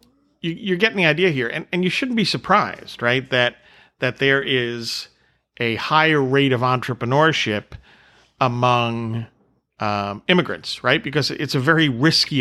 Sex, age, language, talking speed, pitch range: male, 50-69, English, 140 wpm, 115-150 Hz